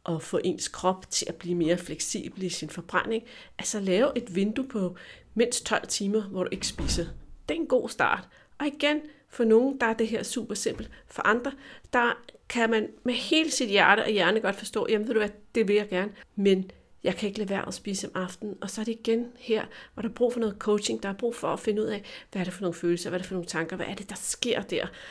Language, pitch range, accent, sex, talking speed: Danish, 180-235 Hz, native, female, 260 wpm